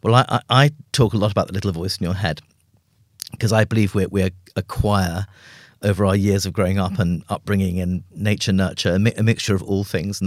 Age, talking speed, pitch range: 40-59, 215 wpm, 95-110 Hz